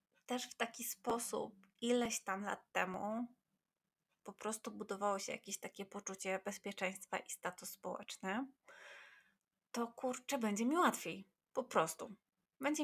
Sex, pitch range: female, 195-265 Hz